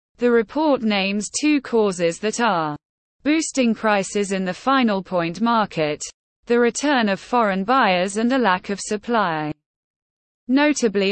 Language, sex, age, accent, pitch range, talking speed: English, female, 20-39, British, 180-245 Hz, 135 wpm